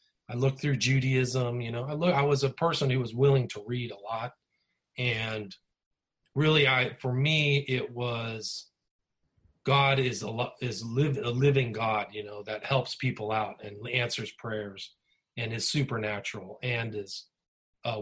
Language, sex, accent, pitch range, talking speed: English, male, American, 115-140 Hz, 155 wpm